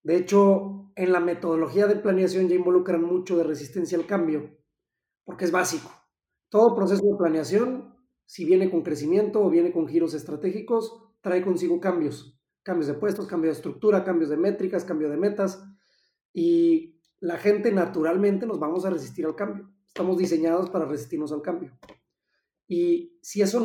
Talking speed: 160 wpm